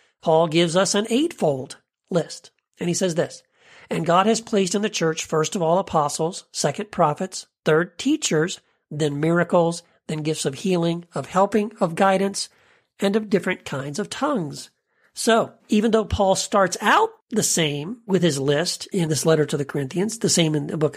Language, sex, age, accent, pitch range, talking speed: English, male, 50-69, American, 160-210 Hz, 180 wpm